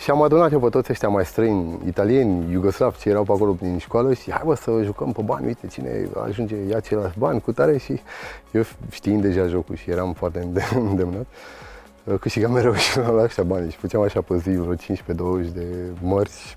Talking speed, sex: 205 wpm, male